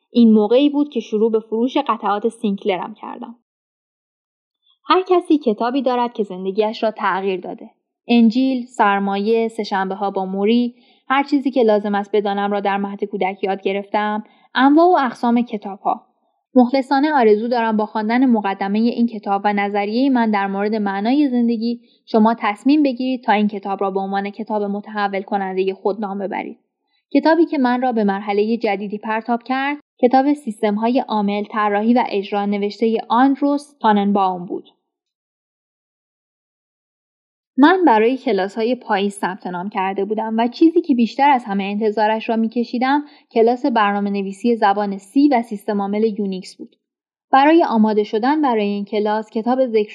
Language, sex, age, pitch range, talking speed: Persian, female, 10-29, 205-255 Hz, 150 wpm